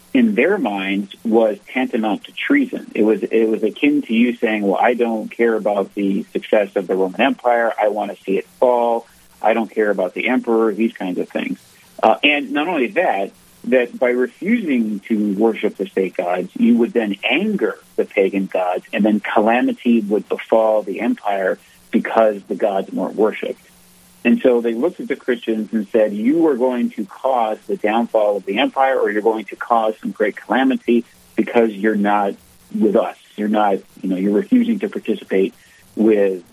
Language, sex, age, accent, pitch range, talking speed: English, male, 50-69, American, 105-125 Hz, 190 wpm